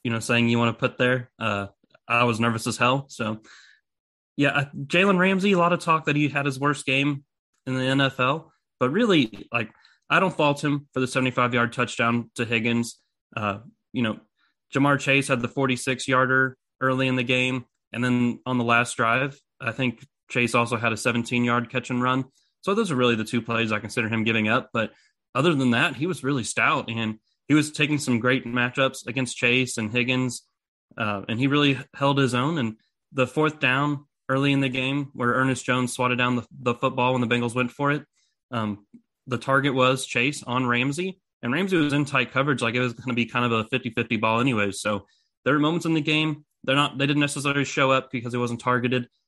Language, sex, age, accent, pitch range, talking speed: English, male, 20-39, American, 120-140 Hz, 220 wpm